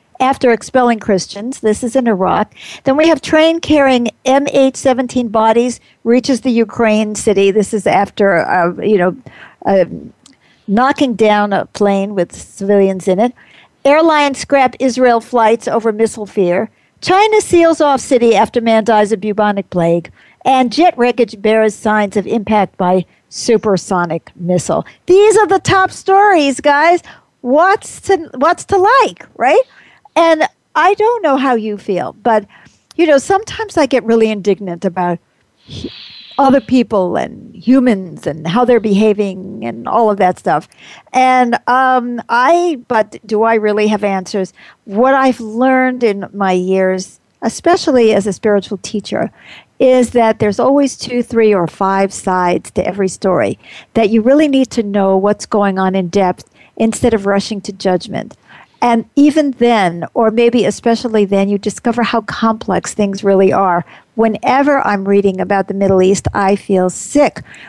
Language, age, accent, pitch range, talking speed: English, 50-69, American, 200-260 Hz, 155 wpm